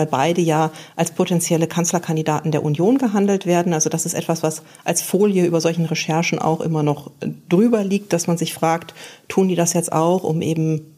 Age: 40-59